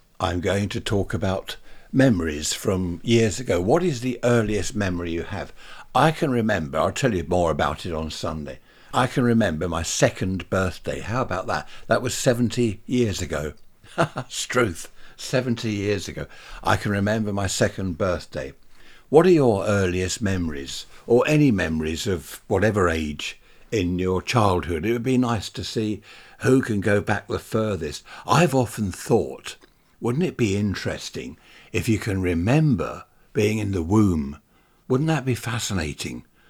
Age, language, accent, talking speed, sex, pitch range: 60-79, English, British, 160 wpm, male, 90-125 Hz